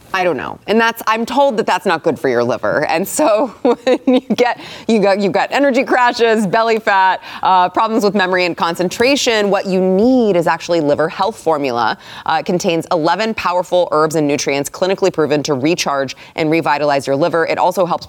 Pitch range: 145-200 Hz